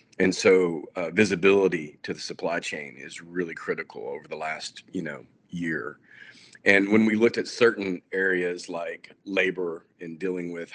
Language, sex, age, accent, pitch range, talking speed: English, male, 40-59, American, 80-95 Hz, 160 wpm